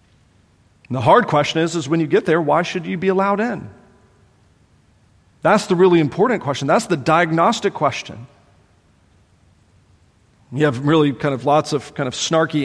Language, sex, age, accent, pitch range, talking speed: English, male, 40-59, American, 110-180 Hz, 165 wpm